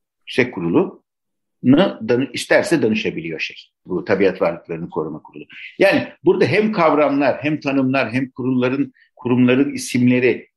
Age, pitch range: 60-79, 110-145 Hz